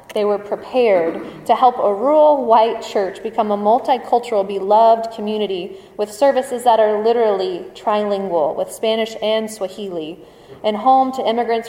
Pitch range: 200-235 Hz